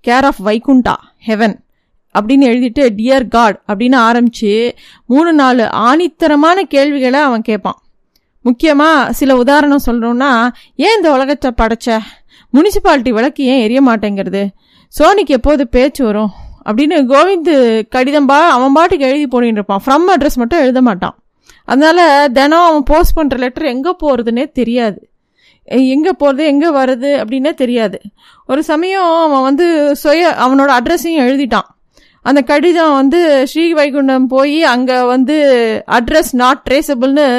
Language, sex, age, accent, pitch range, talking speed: Tamil, female, 20-39, native, 240-300 Hz, 125 wpm